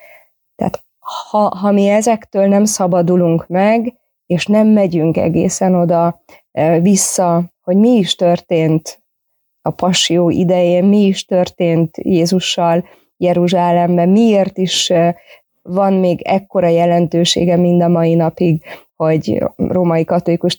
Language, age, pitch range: Hungarian, 20-39, 170-195 Hz